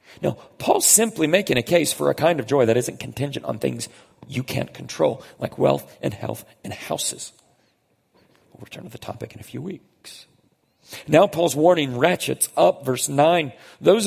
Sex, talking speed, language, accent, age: male, 180 wpm, English, American, 40-59